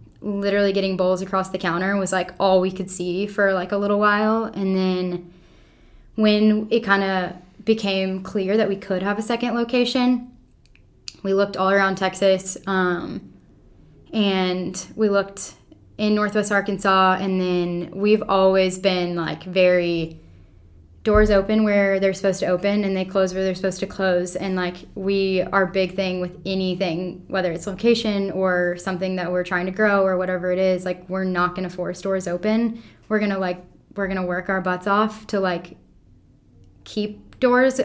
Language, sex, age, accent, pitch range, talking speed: English, female, 10-29, American, 180-200 Hz, 175 wpm